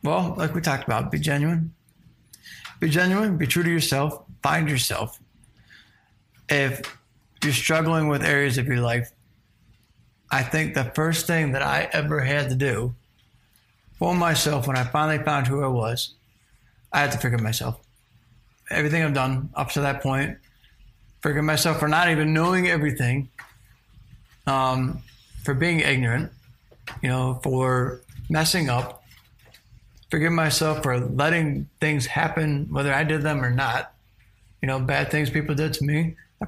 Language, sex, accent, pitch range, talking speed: English, male, American, 120-160 Hz, 150 wpm